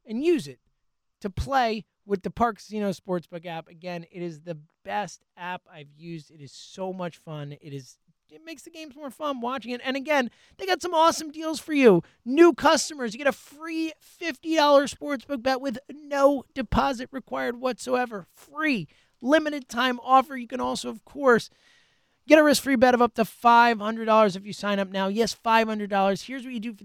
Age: 30-49